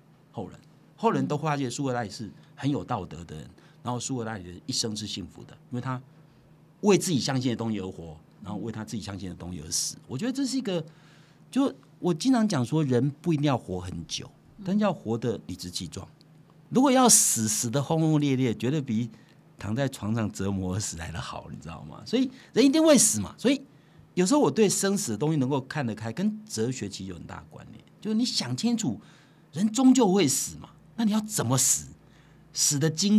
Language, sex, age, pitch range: Chinese, male, 50-69, 115-185 Hz